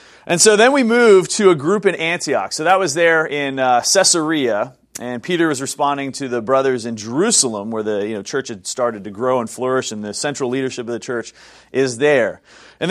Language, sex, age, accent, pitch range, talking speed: English, male, 30-49, American, 120-165 Hz, 220 wpm